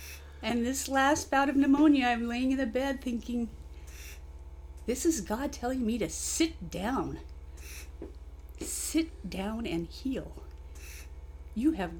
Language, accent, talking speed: English, American, 130 wpm